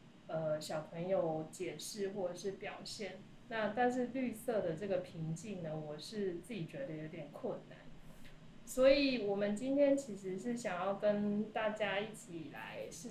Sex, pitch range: female, 175-210 Hz